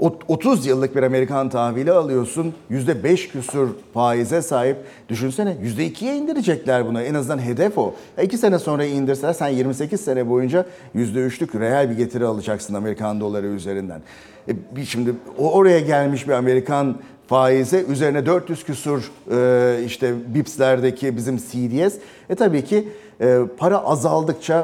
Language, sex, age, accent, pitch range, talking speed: Turkish, male, 40-59, native, 125-170 Hz, 140 wpm